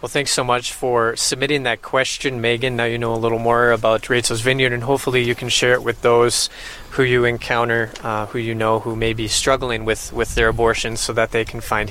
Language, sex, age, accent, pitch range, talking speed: English, male, 20-39, American, 120-140 Hz, 230 wpm